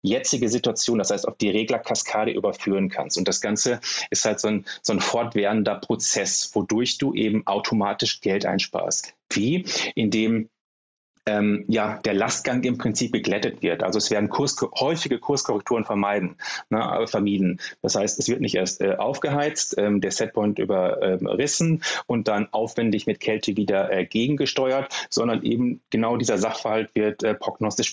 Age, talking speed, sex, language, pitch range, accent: 30-49, 155 wpm, male, German, 100-115 Hz, German